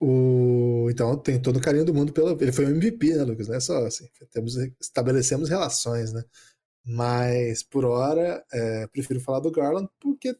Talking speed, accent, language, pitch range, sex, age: 180 wpm, Brazilian, Portuguese, 125-185 Hz, male, 20-39